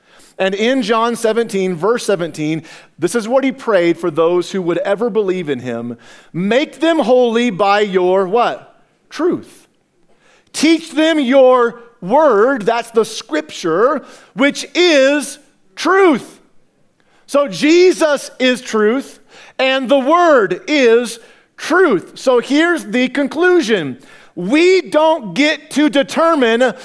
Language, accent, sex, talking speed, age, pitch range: English, American, male, 120 wpm, 40-59, 215-295 Hz